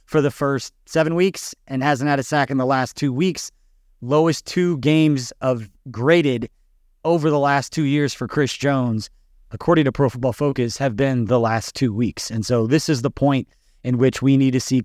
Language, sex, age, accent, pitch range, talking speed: English, male, 30-49, American, 120-145 Hz, 205 wpm